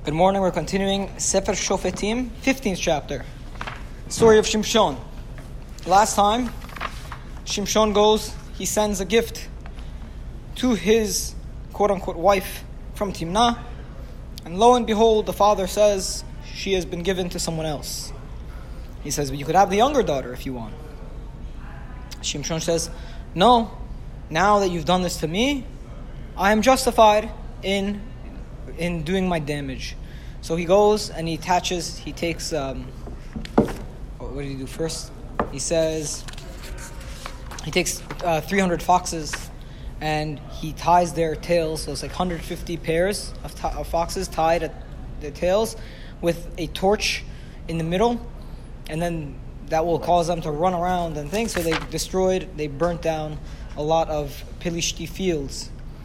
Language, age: English, 20-39